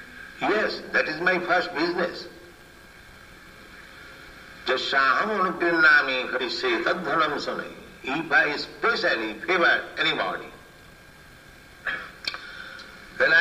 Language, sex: Italian, male